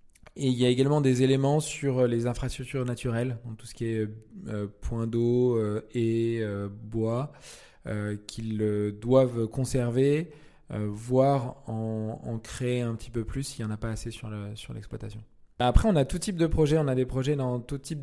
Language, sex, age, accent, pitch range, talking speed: French, male, 20-39, French, 115-135 Hz, 205 wpm